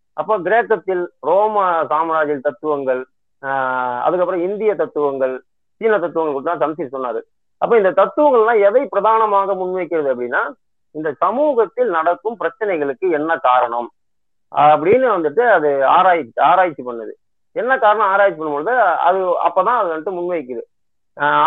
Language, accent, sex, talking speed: Tamil, native, male, 125 wpm